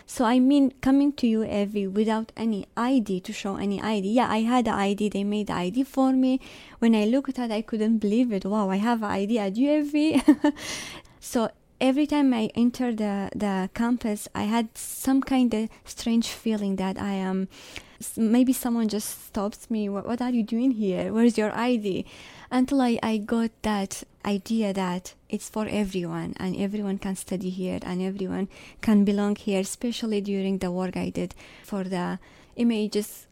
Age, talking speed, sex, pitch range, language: 20-39, 185 wpm, female, 190-230 Hz, English